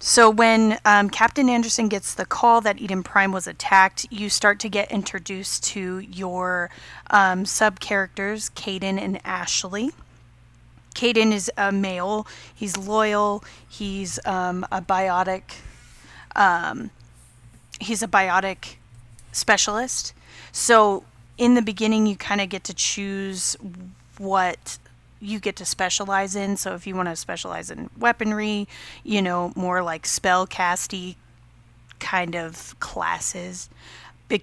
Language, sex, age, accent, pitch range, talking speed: English, female, 30-49, American, 175-210 Hz, 130 wpm